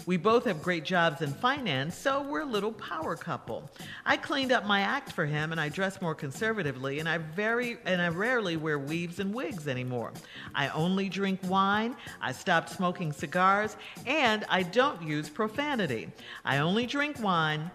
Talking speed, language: 180 wpm, English